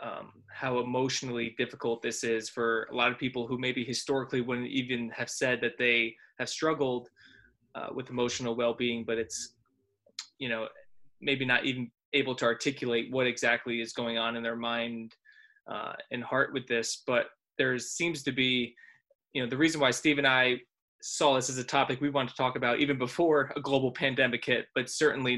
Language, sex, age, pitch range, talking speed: English, male, 20-39, 120-140 Hz, 190 wpm